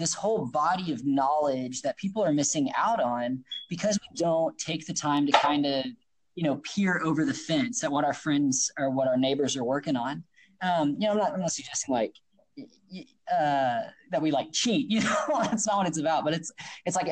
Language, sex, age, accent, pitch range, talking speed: English, male, 20-39, American, 135-185 Hz, 215 wpm